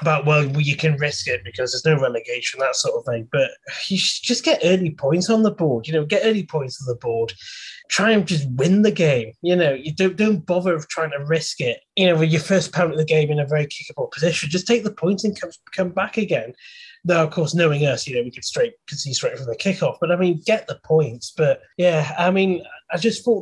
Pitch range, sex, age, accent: 145-185 Hz, male, 20-39, British